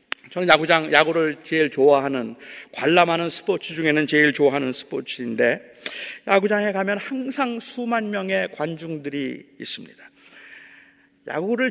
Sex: male